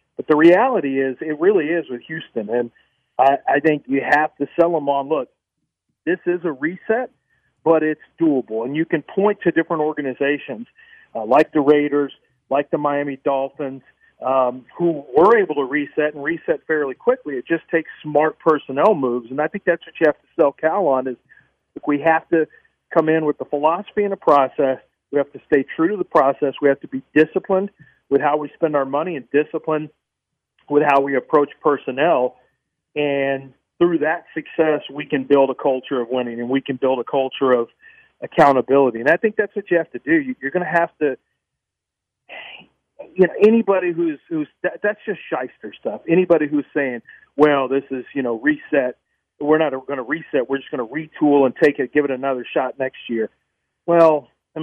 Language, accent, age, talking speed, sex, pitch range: English, American, 40-59, 200 wpm, male, 135-170 Hz